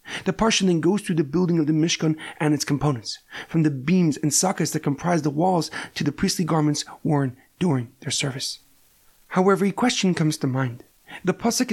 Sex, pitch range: male, 155-200 Hz